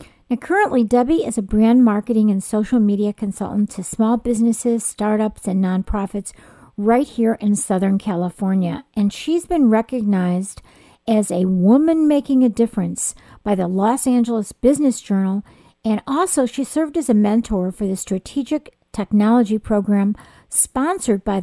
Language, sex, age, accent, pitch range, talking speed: English, female, 50-69, American, 200-255 Hz, 145 wpm